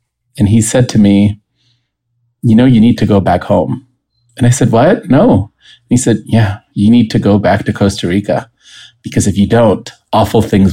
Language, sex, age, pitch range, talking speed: English, male, 30-49, 110-130 Hz, 195 wpm